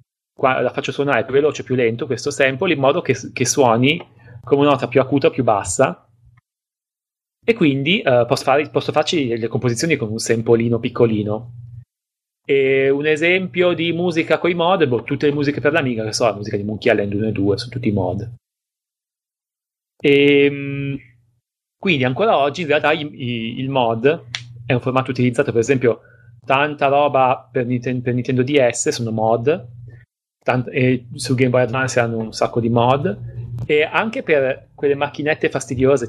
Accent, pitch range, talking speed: native, 120-145 Hz, 180 wpm